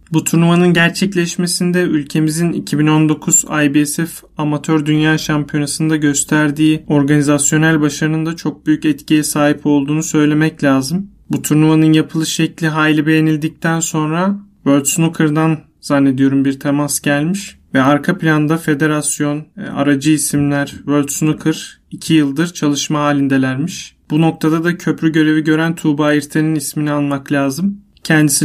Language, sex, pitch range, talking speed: Turkish, male, 145-160 Hz, 120 wpm